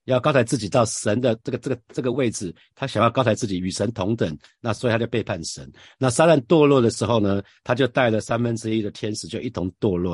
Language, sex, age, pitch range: Chinese, male, 50-69, 100-125 Hz